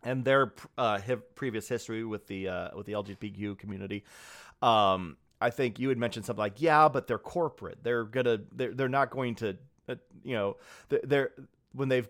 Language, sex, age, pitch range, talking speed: English, male, 30-49, 105-130 Hz, 185 wpm